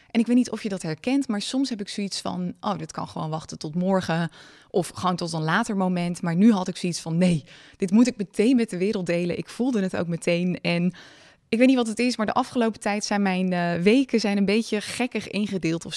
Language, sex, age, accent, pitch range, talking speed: Dutch, female, 20-39, Dutch, 175-215 Hz, 255 wpm